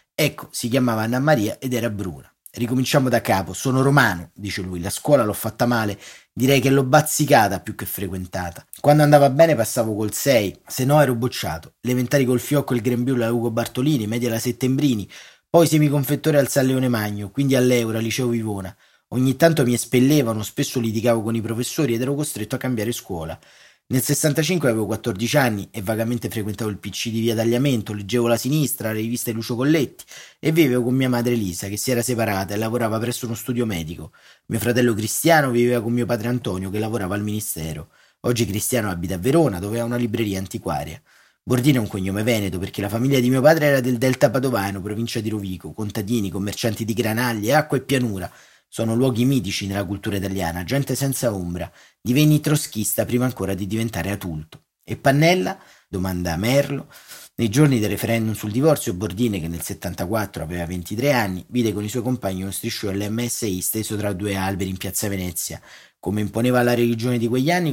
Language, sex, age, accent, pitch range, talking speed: Italian, male, 30-49, native, 105-130 Hz, 190 wpm